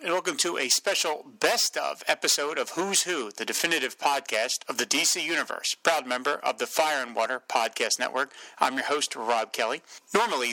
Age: 40-59